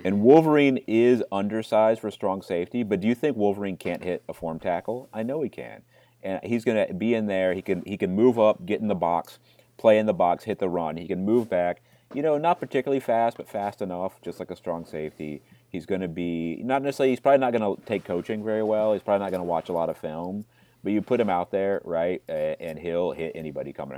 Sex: male